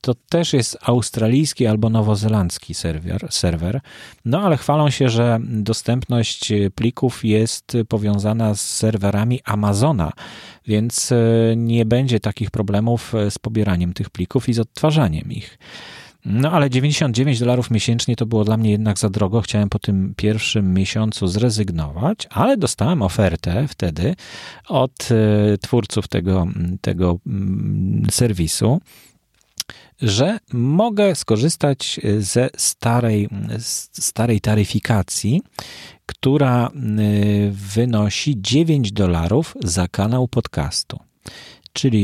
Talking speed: 105 wpm